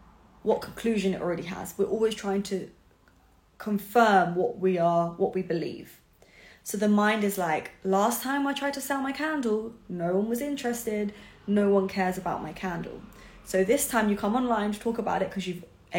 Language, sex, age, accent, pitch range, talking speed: English, female, 20-39, British, 185-220 Hz, 190 wpm